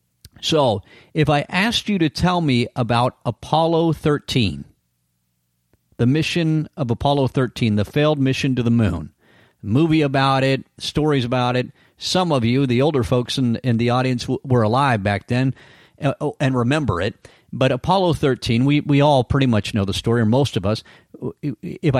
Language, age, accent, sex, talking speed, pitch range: English, 50-69, American, male, 170 wpm, 115-150 Hz